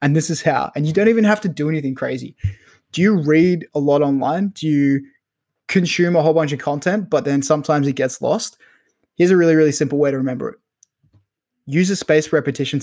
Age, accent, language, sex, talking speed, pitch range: 20-39, Australian, English, male, 215 wpm, 140-175 Hz